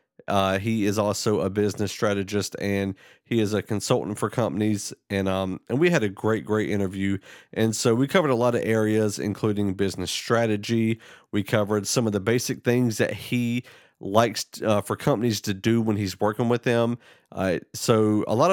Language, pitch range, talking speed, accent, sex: English, 100-120 Hz, 190 wpm, American, male